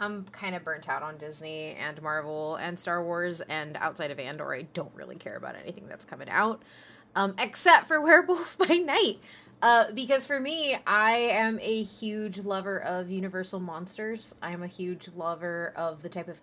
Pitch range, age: 170-215 Hz, 20-39